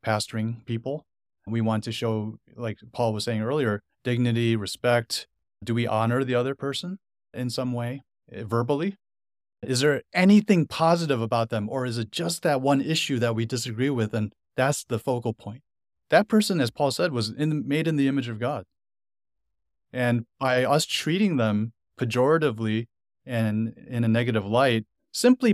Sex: male